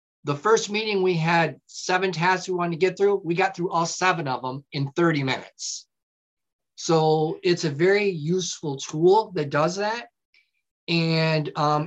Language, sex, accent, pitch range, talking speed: Polish, male, American, 150-185 Hz, 165 wpm